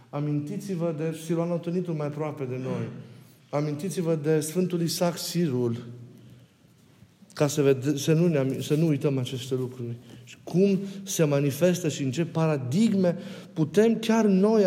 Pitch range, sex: 135-180 Hz, male